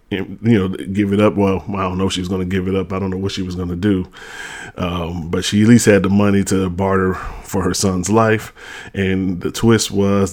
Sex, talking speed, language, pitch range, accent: male, 250 wpm, English, 95-105 Hz, American